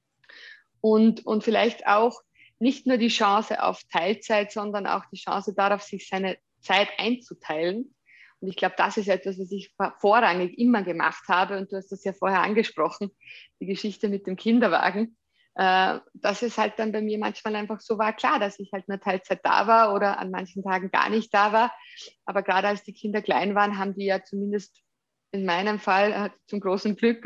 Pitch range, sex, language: 195-225 Hz, female, German